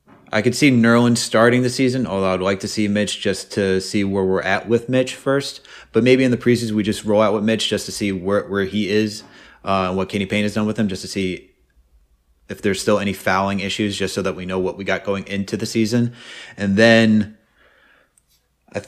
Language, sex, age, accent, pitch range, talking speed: English, male, 30-49, American, 95-115 Hz, 230 wpm